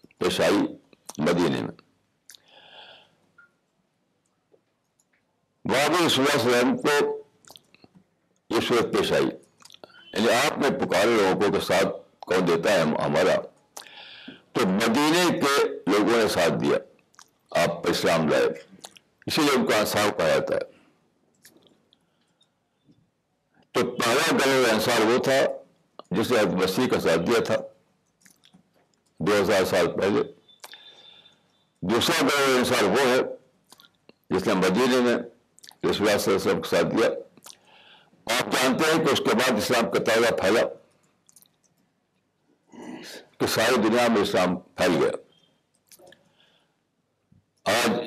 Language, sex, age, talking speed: Urdu, male, 60-79, 110 wpm